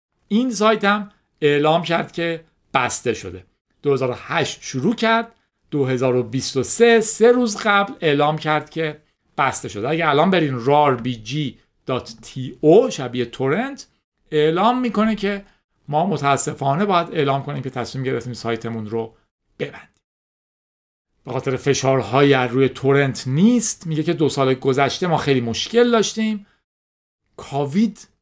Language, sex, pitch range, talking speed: Persian, male, 125-180 Hz, 115 wpm